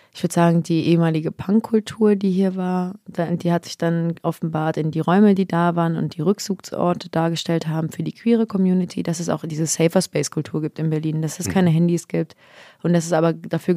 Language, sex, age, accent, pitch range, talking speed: German, female, 30-49, German, 155-175 Hz, 205 wpm